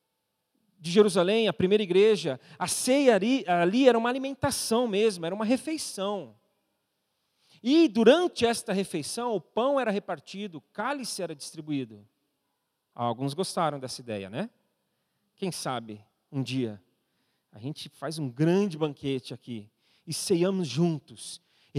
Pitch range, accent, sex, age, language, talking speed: 145-225 Hz, Brazilian, male, 40-59, Portuguese, 130 wpm